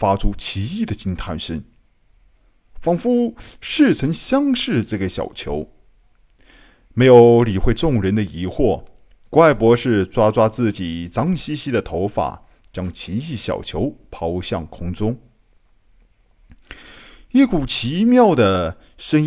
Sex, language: male, Chinese